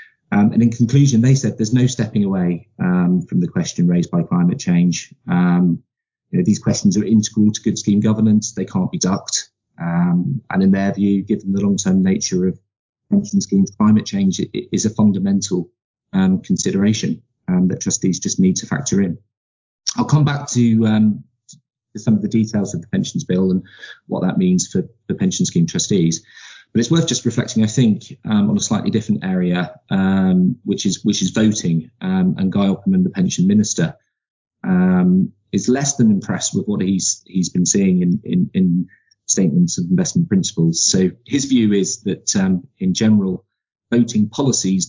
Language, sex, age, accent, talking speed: English, male, 30-49, British, 185 wpm